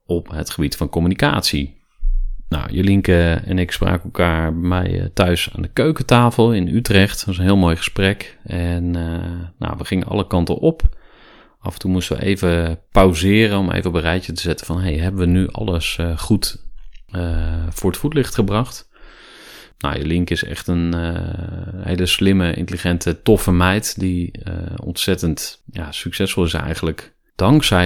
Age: 30-49